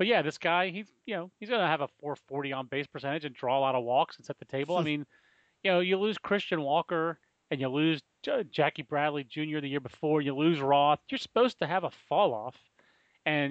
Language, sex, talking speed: English, male, 235 wpm